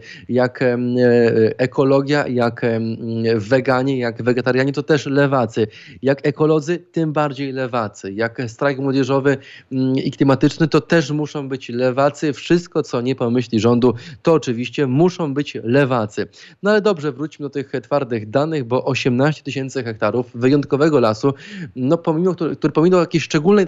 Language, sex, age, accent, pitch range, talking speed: Polish, male, 20-39, native, 120-150 Hz, 135 wpm